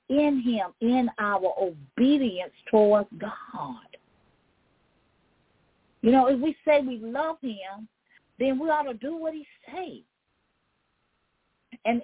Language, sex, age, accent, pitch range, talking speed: English, female, 40-59, American, 215-300 Hz, 120 wpm